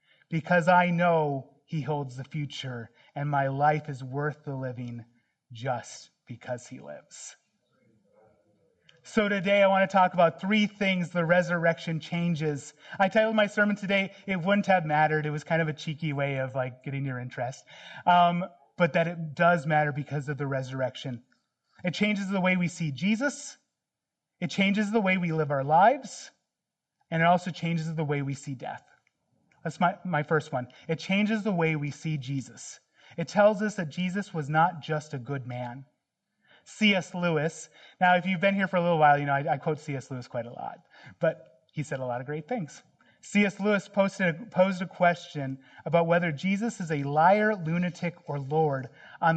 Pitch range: 140-185 Hz